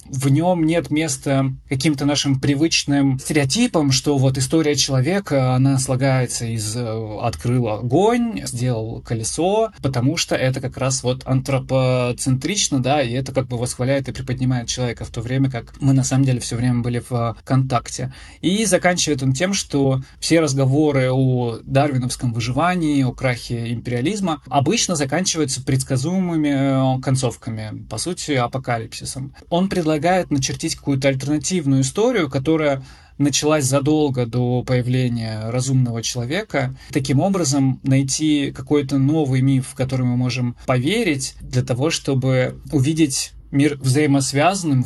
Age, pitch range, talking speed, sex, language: 20-39, 125-145 Hz, 130 wpm, male, Russian